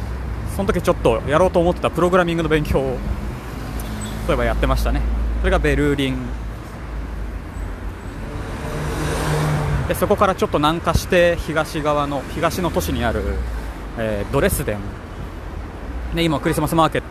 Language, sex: Japanese, male